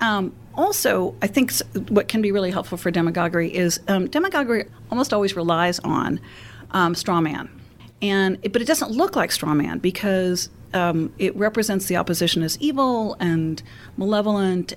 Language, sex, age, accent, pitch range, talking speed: English, female, 40-59, American, 160-200 Hz, 165 wpm